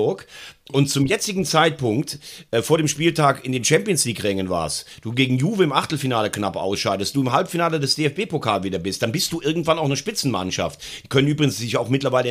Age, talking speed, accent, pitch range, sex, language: 40-59, 200 wpm, German, 120-155 Hz, male, German